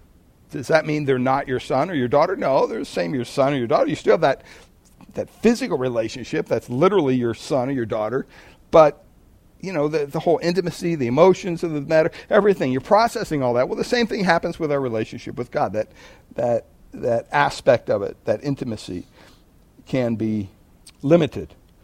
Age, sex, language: 60-79, male, English